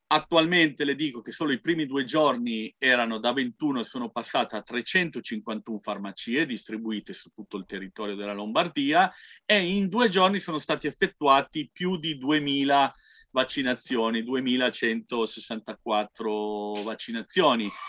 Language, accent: Italian, native